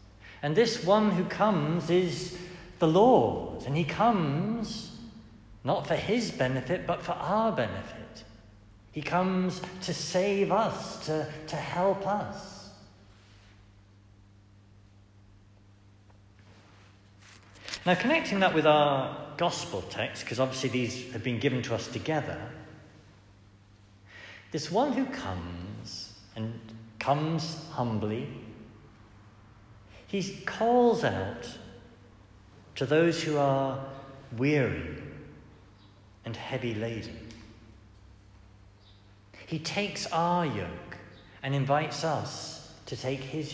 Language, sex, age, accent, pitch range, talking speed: English, male, 60-79, British, 100-160 Hz, 100 wpm